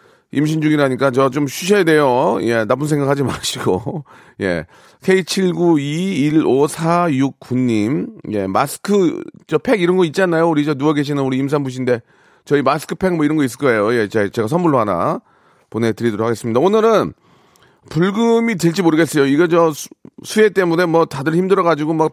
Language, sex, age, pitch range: Korean, male, 40-59, 125-170 Hz